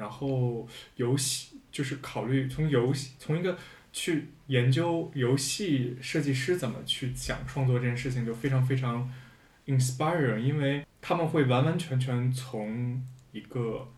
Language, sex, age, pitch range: Chinese, male, 20-39, 125-135 Hz